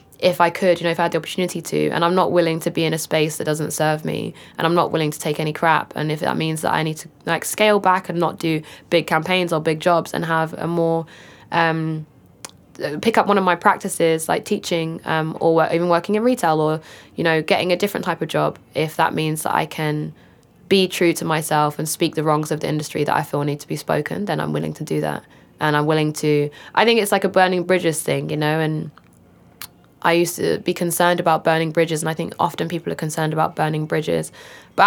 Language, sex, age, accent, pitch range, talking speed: English, female, 10-29, British, 150-170 Hz, 245 wpm